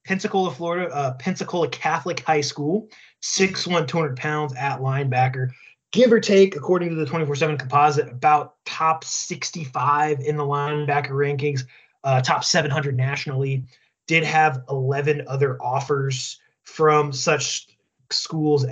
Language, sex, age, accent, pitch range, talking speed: English, male, 20-39, American, 135-160 Hz, 130 wpm